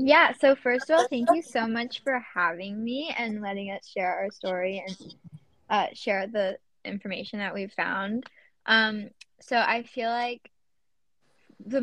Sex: female